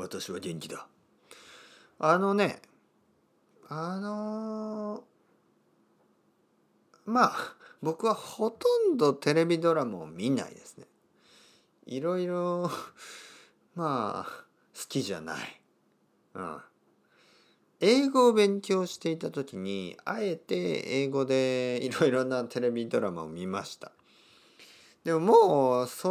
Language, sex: Japanese, male